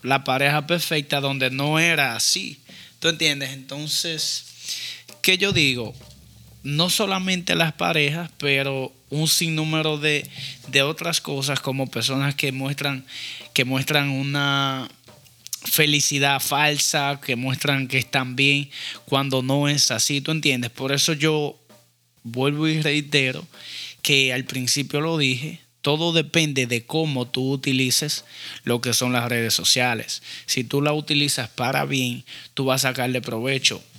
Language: Spanish